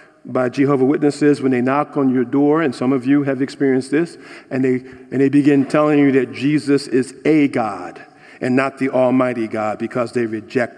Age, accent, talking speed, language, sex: 50-69, American, 195 wpm, English, male